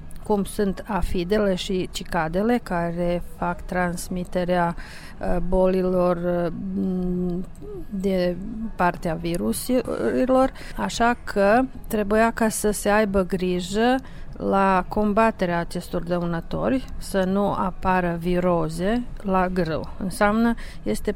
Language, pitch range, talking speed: Romanian, 180-215 Hz, 90 wpm